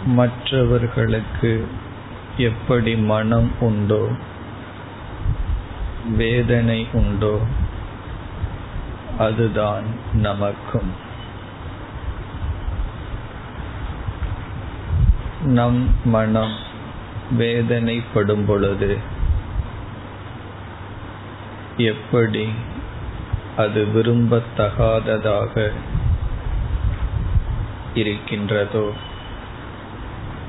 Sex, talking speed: male, 35 wpm